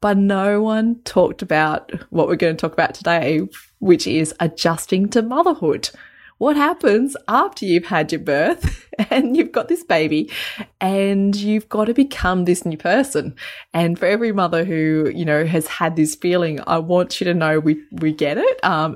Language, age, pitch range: English, 20-39, 155-210 Hz